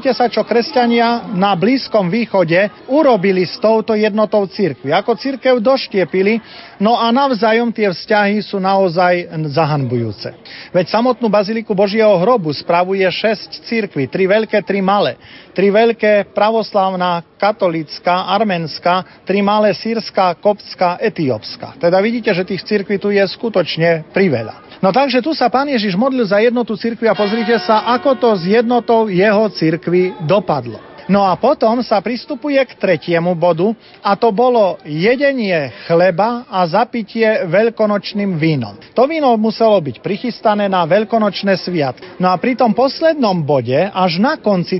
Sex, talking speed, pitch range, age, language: male, 145 wpm, 180-230 Hz, 40-59, Slovak